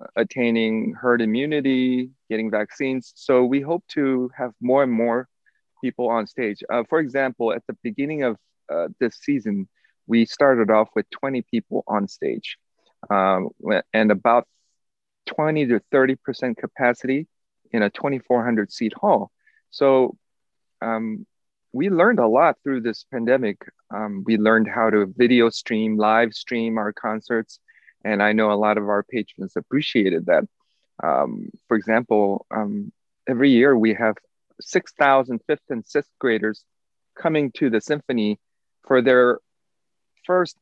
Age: 40-59